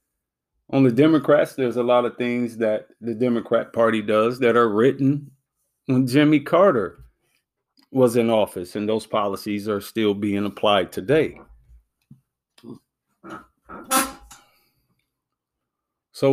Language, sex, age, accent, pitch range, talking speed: English, male, 40-59, American, 110-135 Hz, 115 wpm